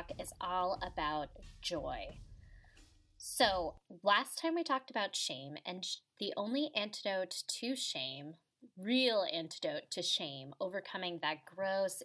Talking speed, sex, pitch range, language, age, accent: 120 wpm, female, 170-250 Hz, English, 20-39, American